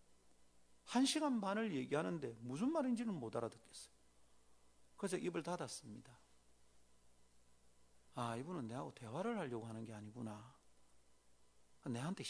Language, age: Korean, 40-59